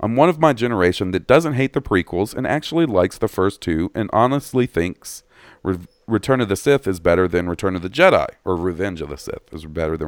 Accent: American